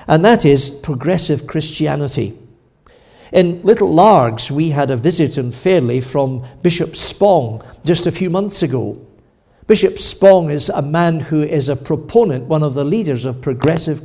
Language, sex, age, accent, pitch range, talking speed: English, male, 60-79, British, 140-185 Hz, 155 wpm